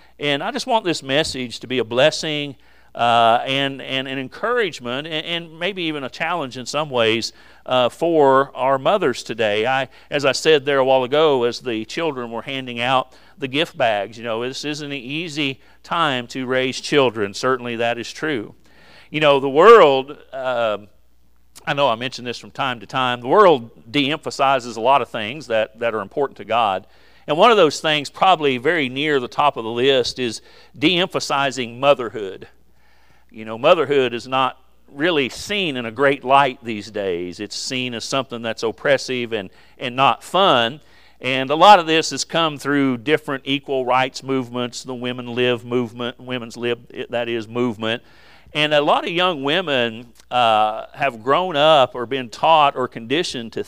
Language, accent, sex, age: English, American, male, 50-69